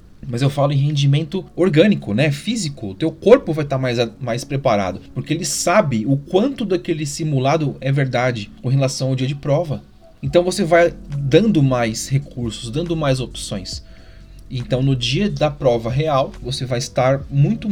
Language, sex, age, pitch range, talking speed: Portuguese, male, 30-49, 115-160 Hz, 170 wpm